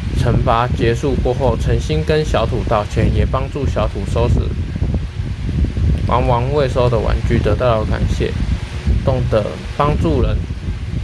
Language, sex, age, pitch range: Chinese, male, 20-39, 95-125 Hz